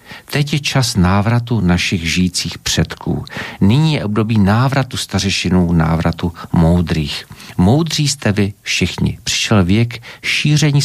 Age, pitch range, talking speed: 50-69, 95-120 Hz, 115 wpm